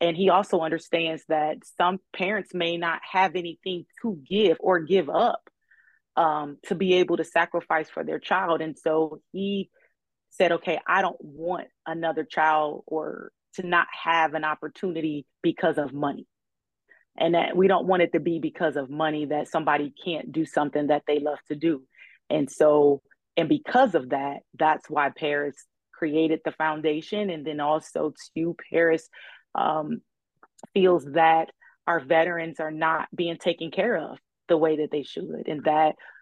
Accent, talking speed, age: American, 165 wpm, 30-49